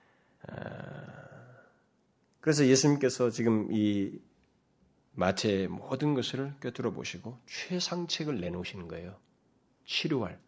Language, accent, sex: Korean, native, male